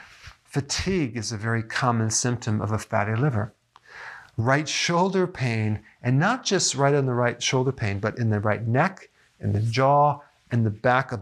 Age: 40-59